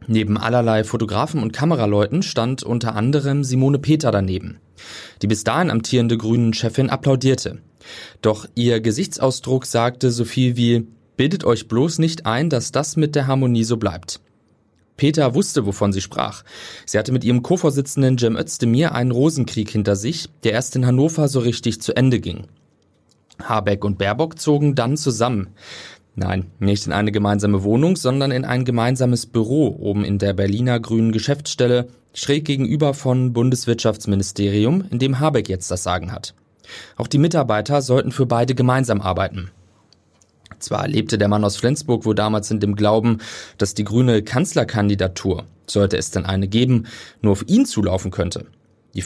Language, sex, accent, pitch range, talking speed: German, male, German, 105-130 Hz, 160 wpm